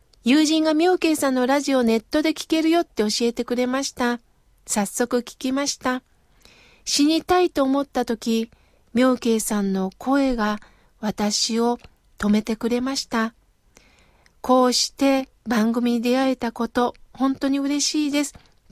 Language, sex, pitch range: Japanese, female, 230-285 Hz